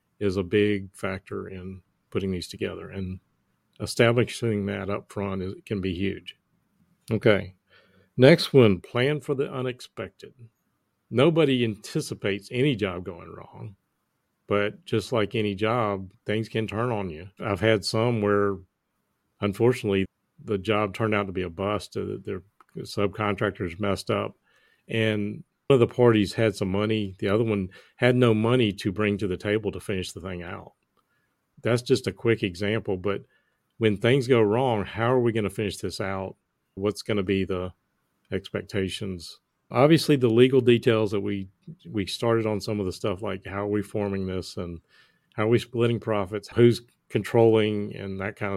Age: 40-59